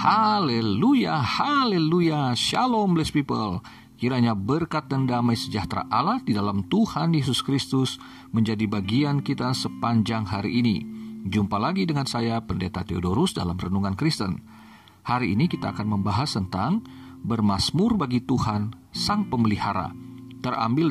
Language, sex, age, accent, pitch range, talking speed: Indonesian, male, 40-59, native, 105-160 Hz, 125 wpm